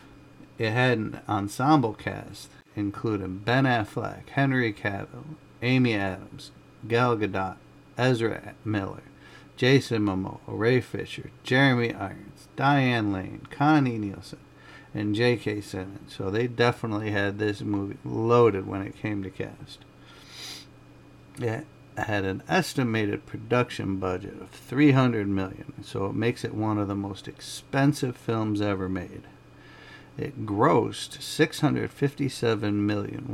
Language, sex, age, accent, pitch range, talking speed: English, male, 50-69, American, 100-130 Hz, 120 wpm